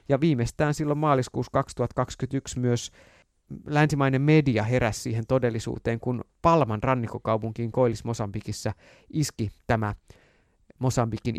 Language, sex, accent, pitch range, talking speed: Finnish, male, native, 110-140 Hz, 100 wpm